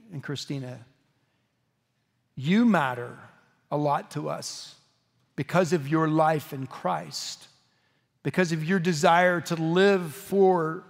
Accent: American